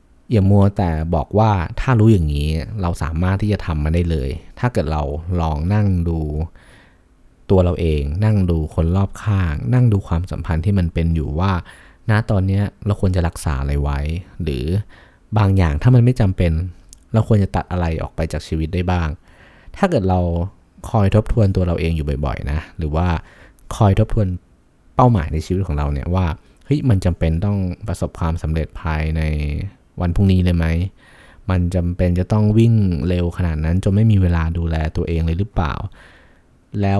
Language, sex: Thai, male